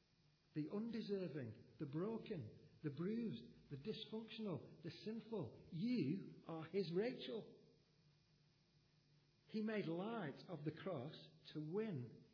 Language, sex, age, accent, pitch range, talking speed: English, male, 50-69, British, 145-170 Hz, 105 wpm